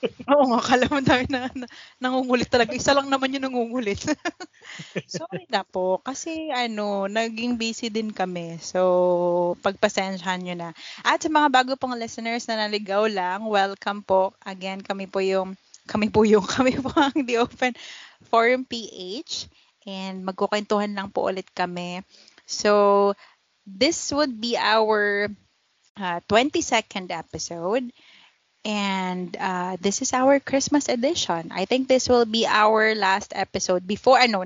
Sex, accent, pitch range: female, native, 190-255 Hz